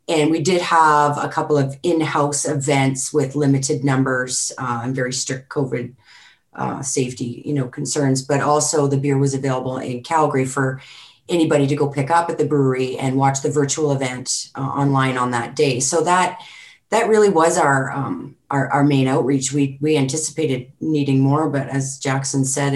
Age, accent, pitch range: 30-49, American, 135-155 Hz